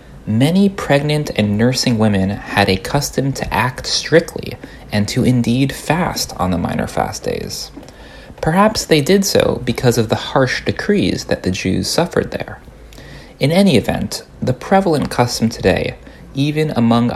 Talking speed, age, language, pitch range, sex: 150 wpm, 30-49, English, 100-140 Hz, male